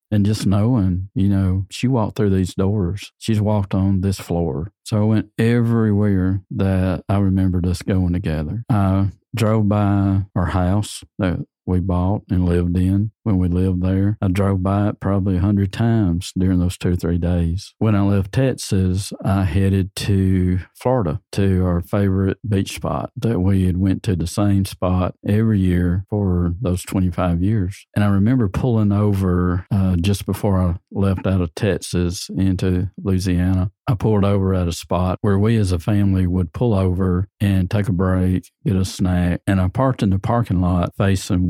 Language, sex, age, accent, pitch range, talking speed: English, male, 50-69, American, 90-105 Hz, 180 wpm